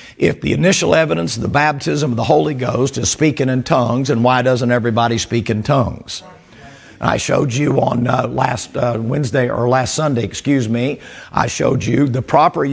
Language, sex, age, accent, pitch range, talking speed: English, male, 50-69, American, 120-145 Hz, 190 wpm